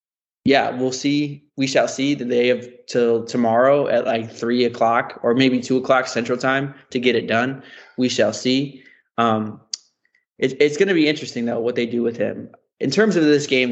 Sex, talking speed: male, 200 wpm